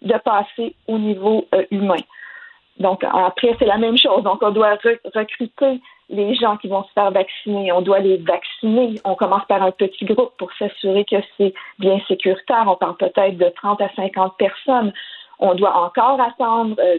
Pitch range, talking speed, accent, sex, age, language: 195-230 Hz, 175 wpm, Canadian, female, 50-69, French